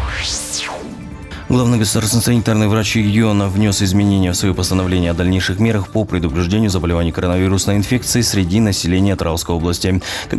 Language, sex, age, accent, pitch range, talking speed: Russian, male, 20-39, native, 90-105 Hz, 135 wpm